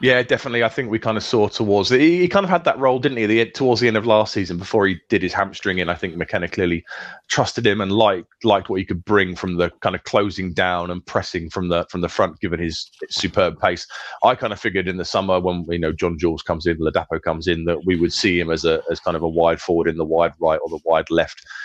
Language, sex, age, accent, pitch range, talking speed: English, male, 30-49, British, 85-100 Hz, 275 wpm